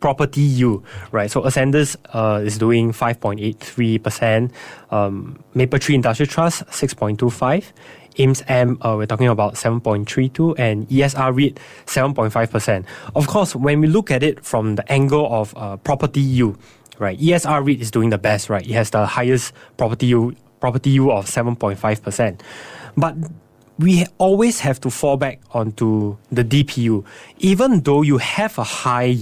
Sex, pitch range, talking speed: male, 115-145 Hz, 150 wpm